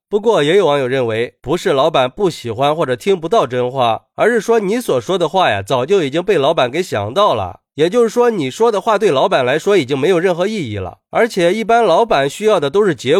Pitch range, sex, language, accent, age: 140-220 Hz, male, Chinese, native, 30-49